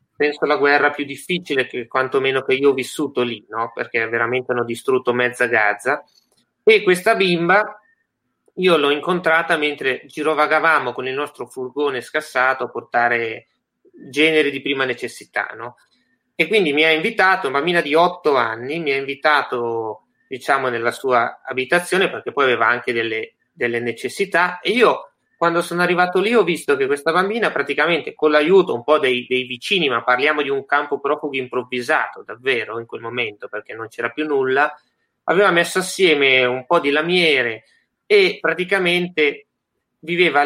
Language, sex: Italian, male